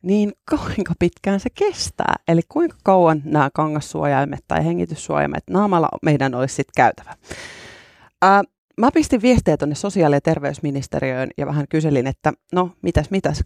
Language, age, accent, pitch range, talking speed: Finnish, 30-49, native, 145-185 Hz, 145 wpm